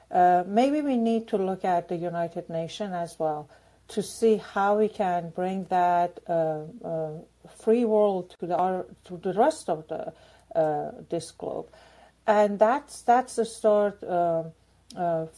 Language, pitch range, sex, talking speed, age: English, 170-220 Hz, female, 155 wpm, 50-69